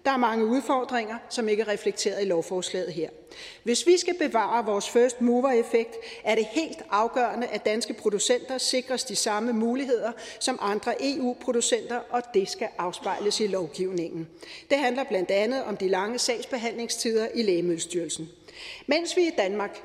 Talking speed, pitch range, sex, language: 155 wpm, 210-270 Hz, female, Danish